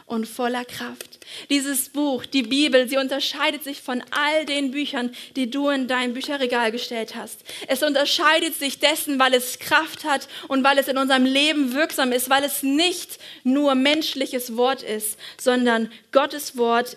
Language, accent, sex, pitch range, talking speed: German, German, female, 245-295 Hz, 165 wpm